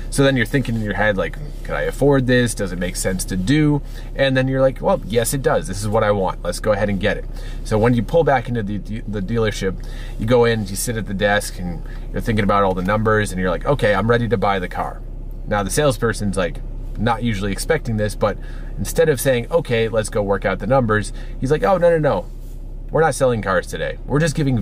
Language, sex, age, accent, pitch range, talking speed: English, male, 30-49, American, 100-130 Hz, 255 wpm